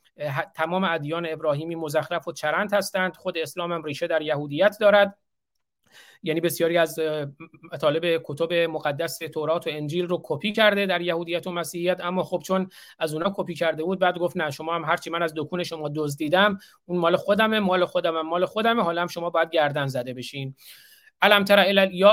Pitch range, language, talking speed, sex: 160-190 Hz, Persian, 175 wpm, male